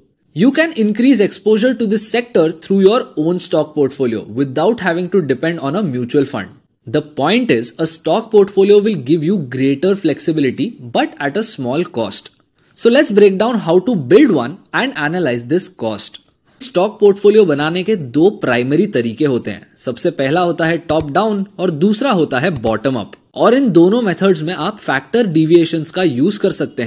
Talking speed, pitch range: 180 wpm, 150-210 Hz